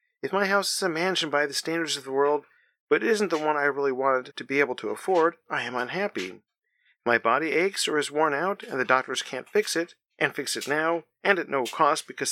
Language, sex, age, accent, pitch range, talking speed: English, male, 50-69, American, 145-195 Hz, 240 wpm